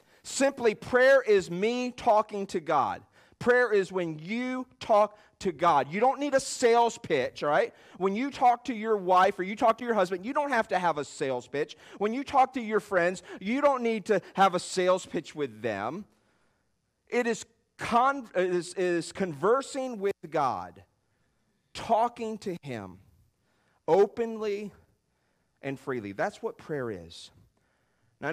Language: English